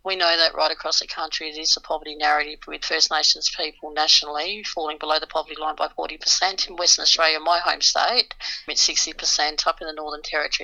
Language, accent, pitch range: English, Australian, 150-165 Hz